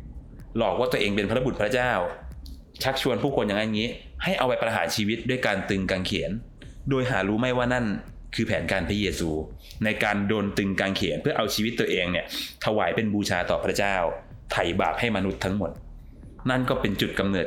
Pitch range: 95-130 Hz